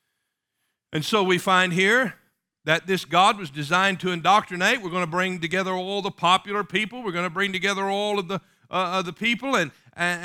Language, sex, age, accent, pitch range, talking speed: English, male, 50-69, American, 125-185 Hz, 200 wpm